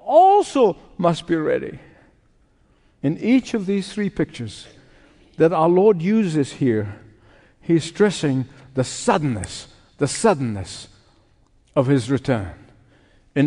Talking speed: 110 wpm